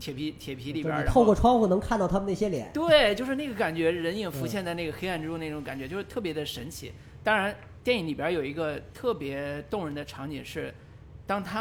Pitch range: 135-185 Hz